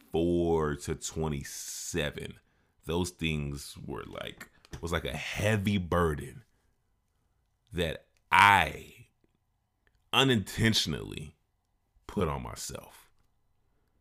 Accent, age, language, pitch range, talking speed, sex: American, 30-49, English, 80-110 Hz, 75 wpm, male